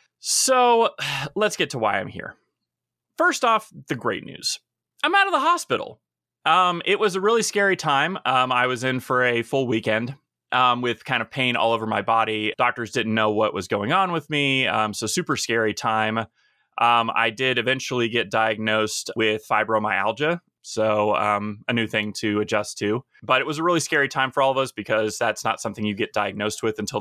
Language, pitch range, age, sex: English, 110-135 Hz, 20-39, male